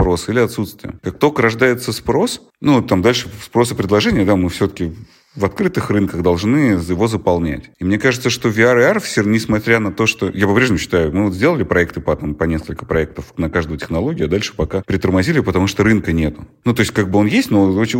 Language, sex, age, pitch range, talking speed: Russian, male, 30-49, 90-110 Hz, 215 wpm